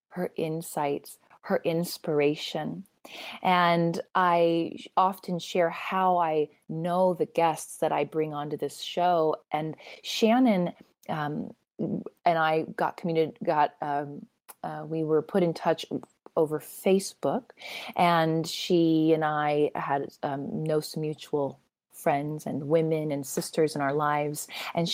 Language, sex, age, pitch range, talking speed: English, female, 30-49, 150-185 Hz, 130 wpm